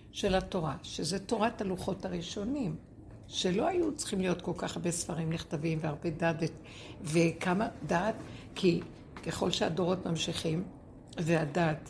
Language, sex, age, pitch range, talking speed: Hebrew, female, 60-79, 165-215 Hz, 120 wpm